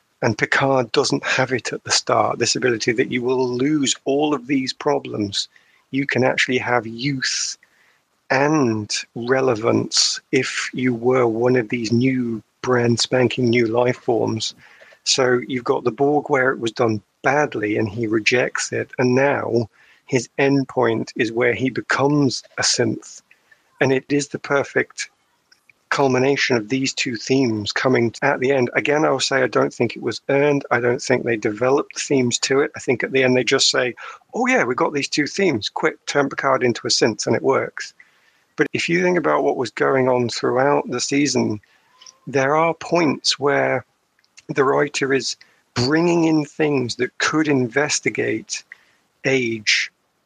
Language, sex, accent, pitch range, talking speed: English, male, British, 120-140 Hz, 170 wpm